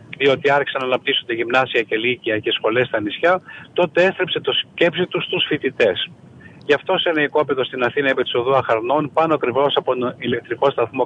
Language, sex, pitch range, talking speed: Greek, male, 125-165 Hz, 185 wpm